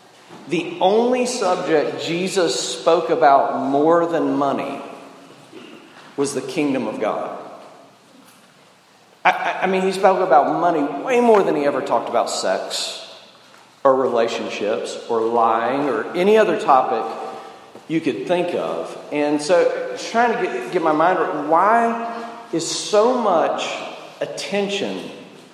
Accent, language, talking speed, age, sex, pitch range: American, English, 135 wpm, 40-59, male, 145-210 Hz